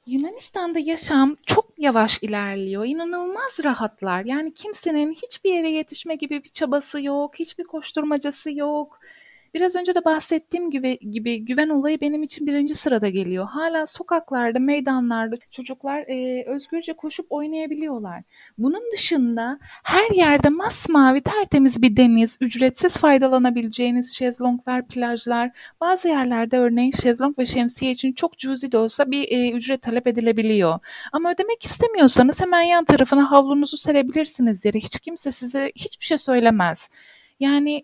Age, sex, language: 30-49, female, Turkish